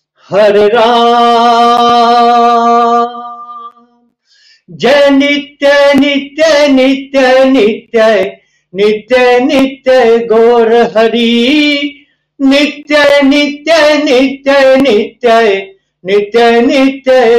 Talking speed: 55 wpm